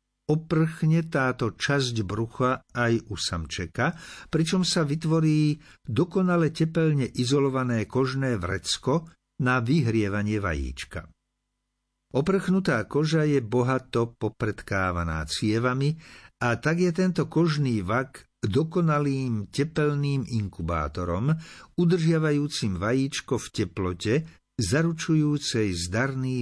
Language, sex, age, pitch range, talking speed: Slovak, male, 50-69, 105-150 Hz, 90 wpm